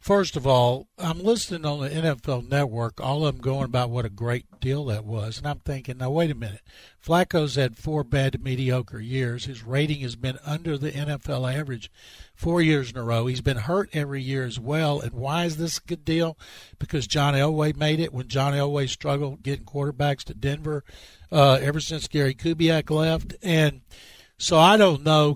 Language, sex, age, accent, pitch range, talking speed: English, male, 60-79, American, 125-160 Hz, 200 wpm